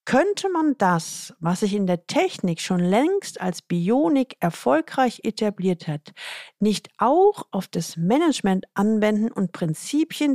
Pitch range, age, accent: 175-250 Hz, 50-69, German